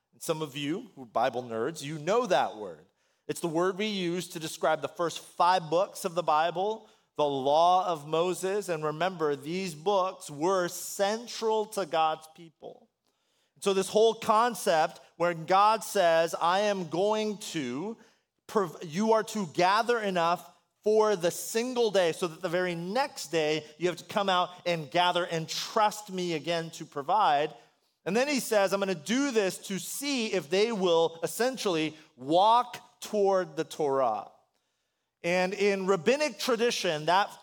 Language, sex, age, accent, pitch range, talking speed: English, male, 30-49, American, 165-210 Hz, 160 wpm